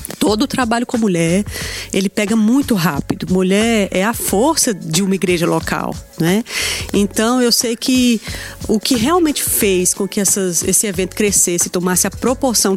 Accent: Brazilian